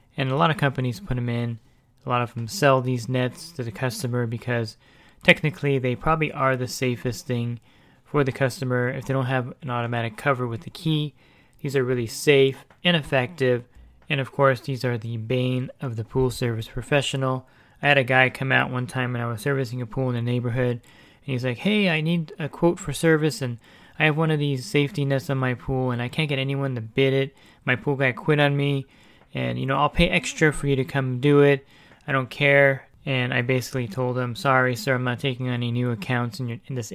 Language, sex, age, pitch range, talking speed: English, male, 20-39, 120-140 Hz, 230 wpm